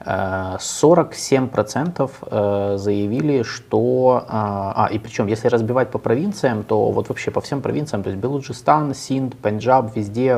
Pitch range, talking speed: 105-130 Hz, 120 wpm